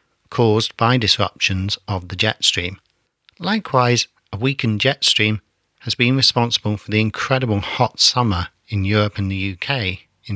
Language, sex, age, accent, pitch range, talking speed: English, male, 40-59, British, 95-120 Hz, 150 wpm